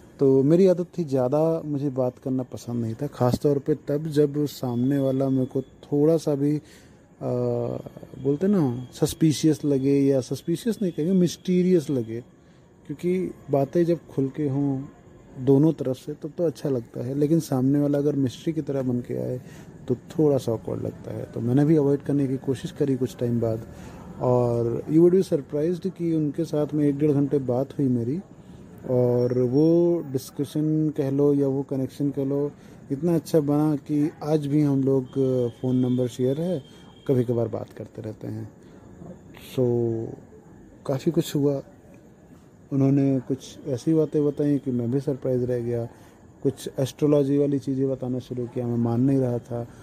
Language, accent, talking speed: English, Indian, 165 wpm